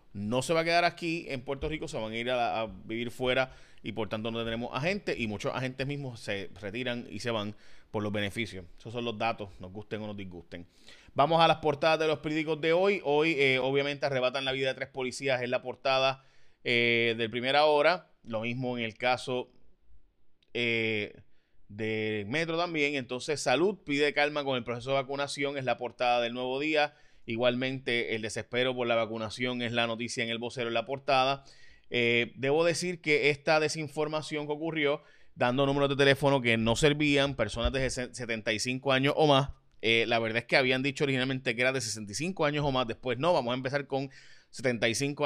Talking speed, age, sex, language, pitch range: 200 wpm, 20-39, male, Spanish, 115-140 Hz